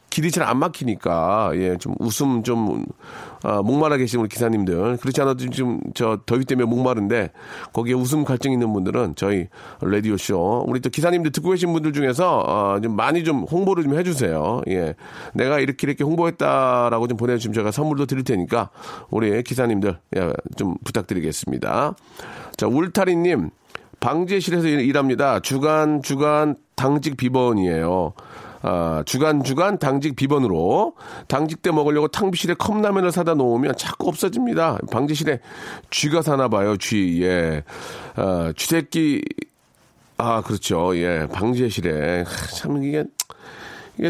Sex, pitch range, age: male, 115-150 Hz, 40-59